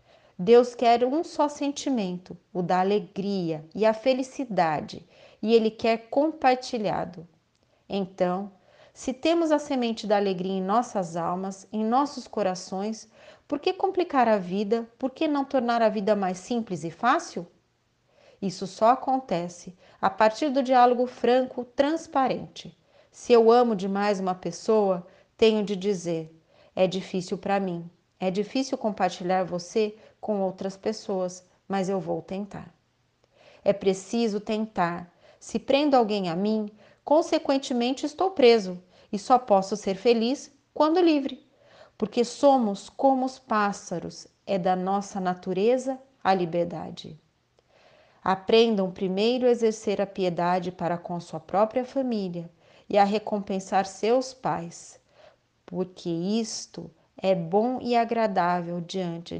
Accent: Brazilian